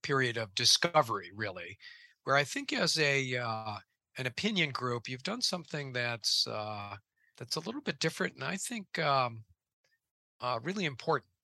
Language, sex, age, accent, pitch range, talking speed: English, male, 50-69, American, 115-150 Hz, 155 wpm